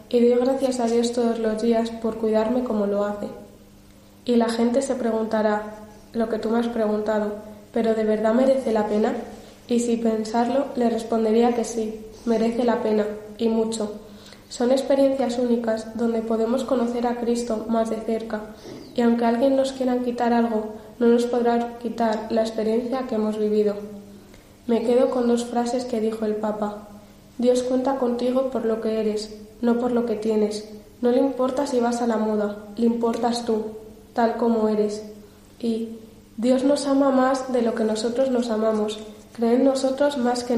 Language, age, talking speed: Spanish, 20-39, 175 wpm